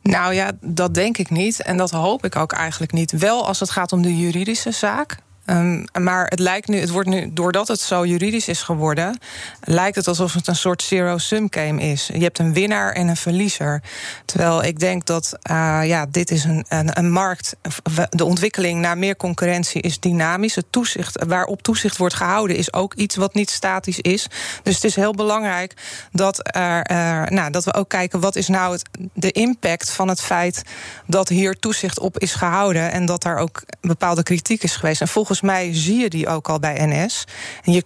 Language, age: Dutch, 20-39